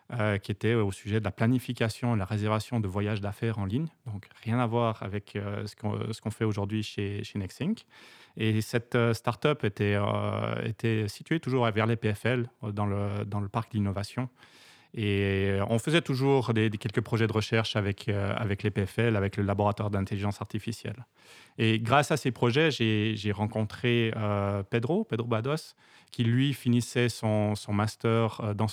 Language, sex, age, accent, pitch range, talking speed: French, male, 30-49, French, 100-115 Hz, 180 wpm